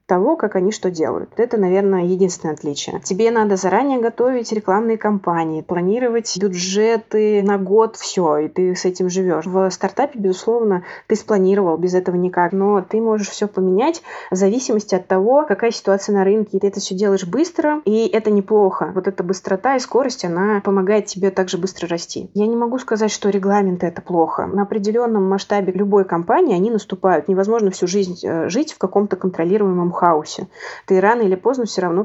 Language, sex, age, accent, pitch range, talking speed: Russian, female, 20-39, native, 185-220 Hz, 175 wpm